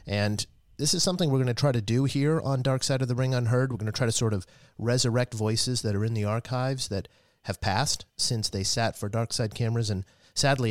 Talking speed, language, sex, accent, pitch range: 245 wpm, English, male, American, 95-120 Hz